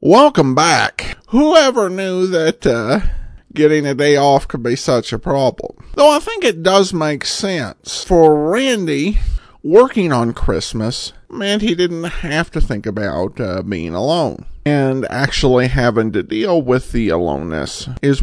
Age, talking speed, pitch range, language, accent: 50-69, 150 wpm, 120-185 Hz, English, American